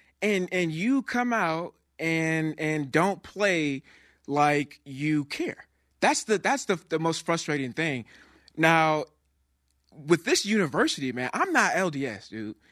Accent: American